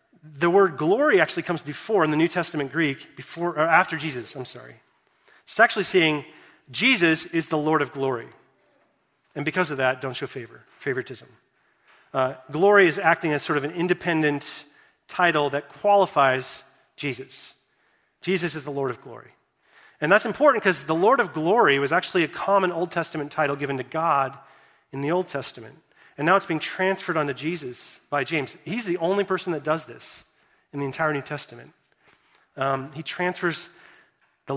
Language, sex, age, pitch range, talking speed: English, male, 30-49, 145-180 Hz, 175 wpm